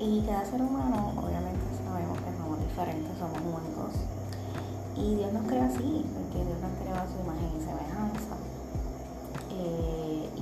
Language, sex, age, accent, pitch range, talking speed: Spanish, female, 20-39, American, 85-100 Hz, 150 wpm